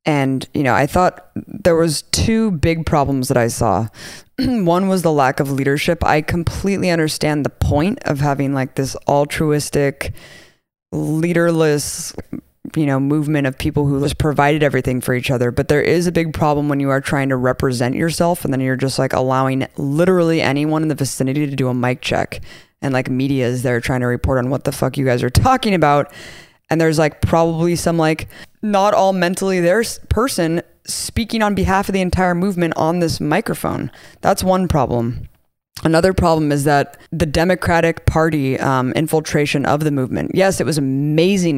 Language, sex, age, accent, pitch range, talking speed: English, female, 20-39, American, 135-165 Hz, 185 wpm